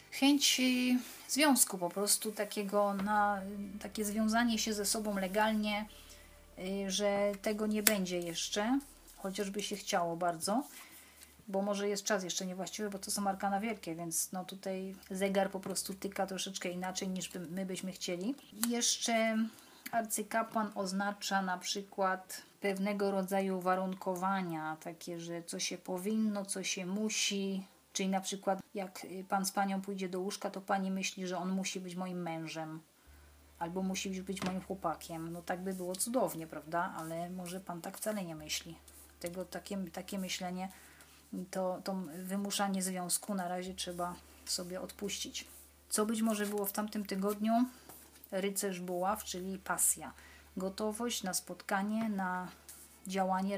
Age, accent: 30-49, native